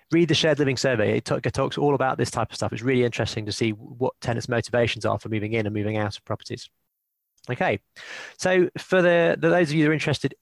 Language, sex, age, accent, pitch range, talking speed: English, male, 20-39, British, 115-145 Hz, 235 wpm